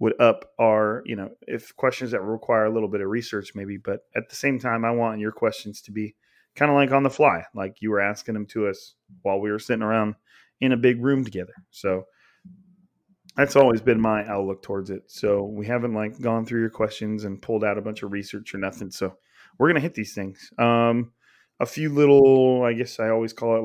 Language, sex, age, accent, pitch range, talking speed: English, male, 30-49, American, 105-125 Hz, 230 wpm